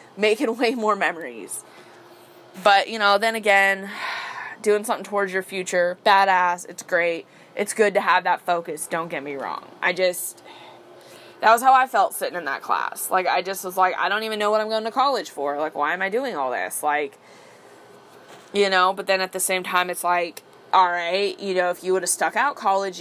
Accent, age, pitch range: American, 20-39, 180-245 Hz